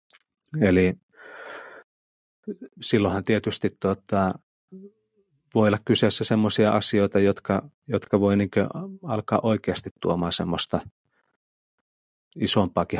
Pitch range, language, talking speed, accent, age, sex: 95-125 Hz, Finnish, 75 wpm, native, 30-49, male